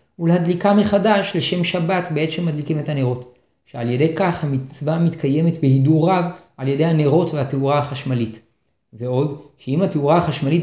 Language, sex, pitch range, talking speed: Hebrew, male, 140-180 Hz, 135 wpm